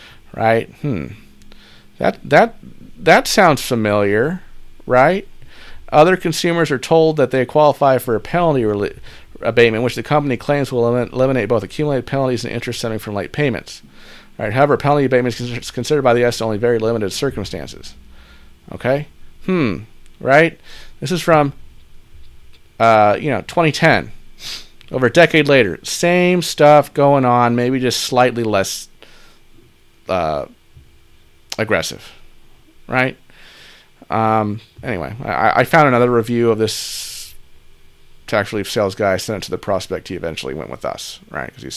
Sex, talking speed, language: male, 140 wpm, English